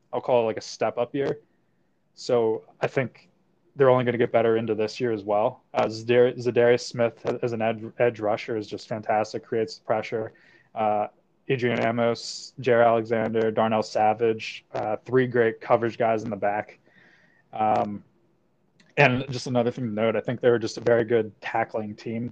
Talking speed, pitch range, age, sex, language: 180 wpm, 110-125 Hz, 20-39, male, English